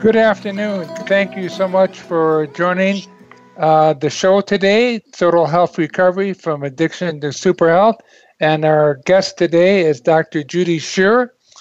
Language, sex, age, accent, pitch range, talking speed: English, male, 50-69, American, 150-180 Hz, 145 wpm